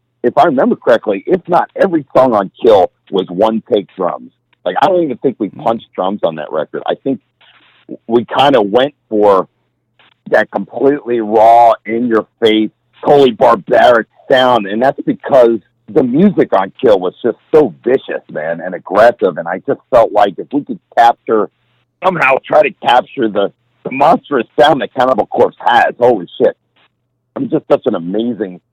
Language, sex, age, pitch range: English, male, 50-69, 100-120 Hz